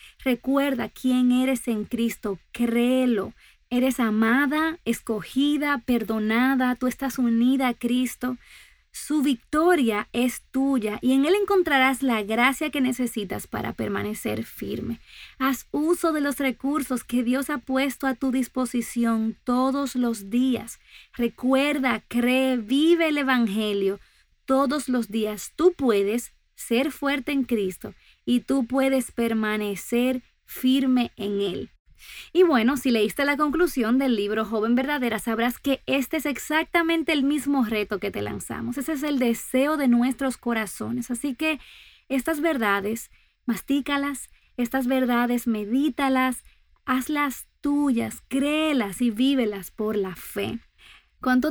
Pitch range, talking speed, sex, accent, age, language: 230-275 Hz, 130 wpm, female, American, 30-49, Spanish